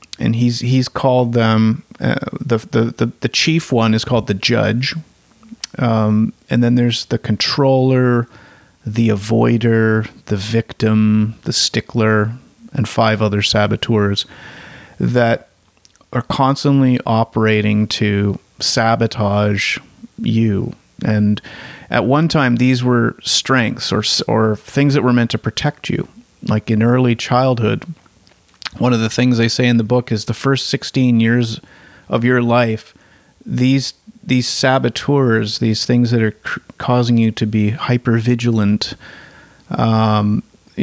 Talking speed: 135 wpm